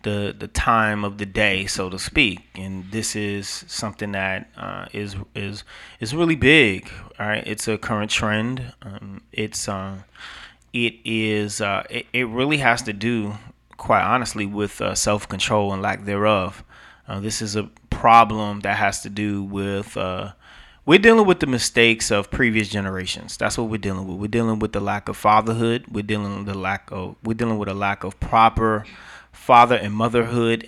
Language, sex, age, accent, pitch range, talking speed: English, male, 20-39, American, 100-115 Hz, 180 wpm